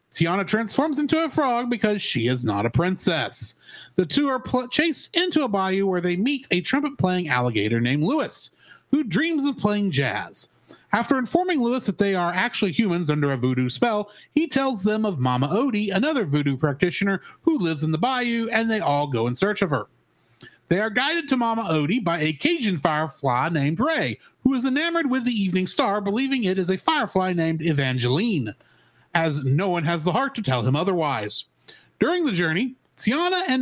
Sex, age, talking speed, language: male, 30-49, 190 wpm, English